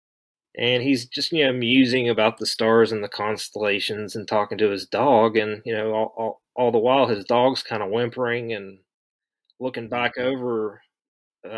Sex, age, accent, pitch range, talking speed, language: male, 30-49, American, 105-130 Hz, 180 wpm, English